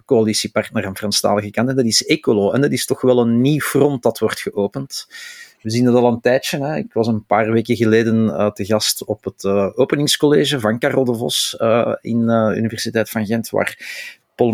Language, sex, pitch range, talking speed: Dutch, male, 105-125 Hz, 220 wpm